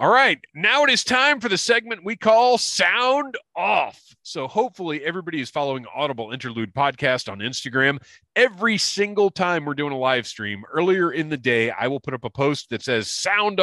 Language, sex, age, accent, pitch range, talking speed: English, male, 30-49, American, 110-160 Hz, 195 wpm